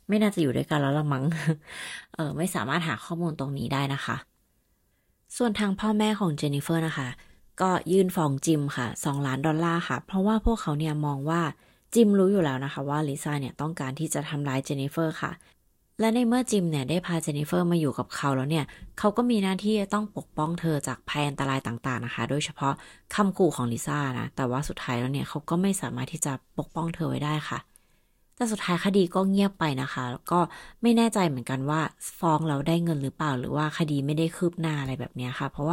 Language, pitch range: Thai, 140-180 Hz